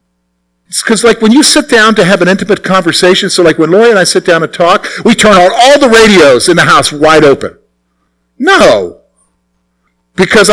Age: 50-69